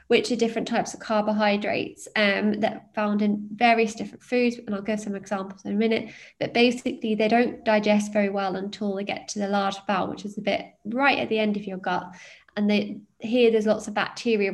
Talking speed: 220 wpm